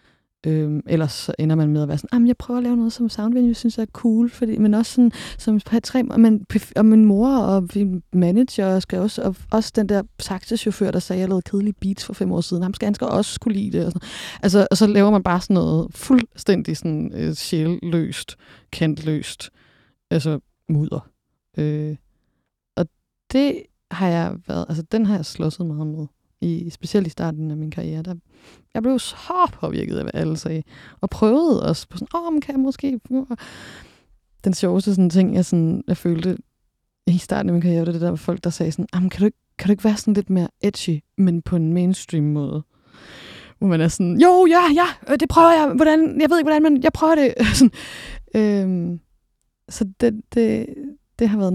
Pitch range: 170-230 Hz